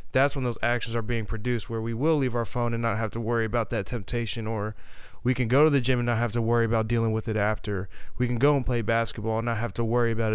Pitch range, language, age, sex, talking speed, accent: 110-130 Hz, English, 20-39, male, 290 wpm, American